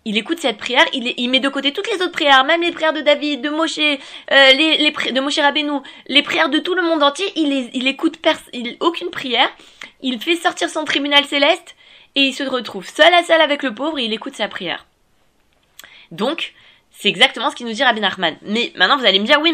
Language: French